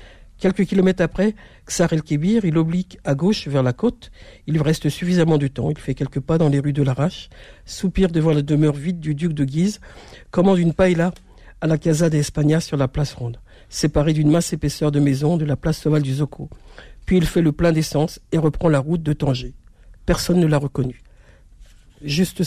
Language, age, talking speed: French, 60-79, 205 wpm